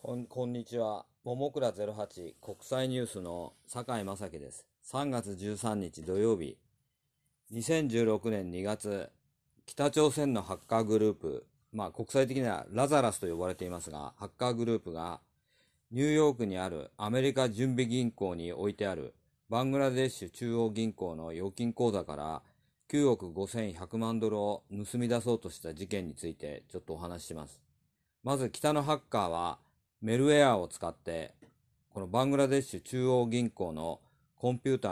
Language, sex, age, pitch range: Japanese, male, 40-59, 95-130 Hz